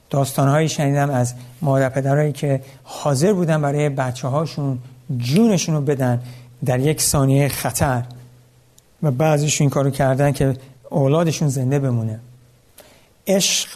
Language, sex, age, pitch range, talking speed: Persian, male, 60-79, 125-155 Hz, 120 wpm